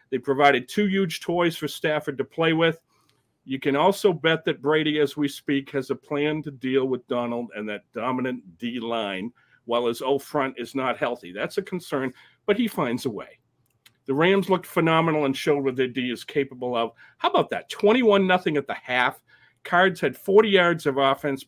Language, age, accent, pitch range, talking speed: English, 50-69, American, 130-185 Hz, 200 wpm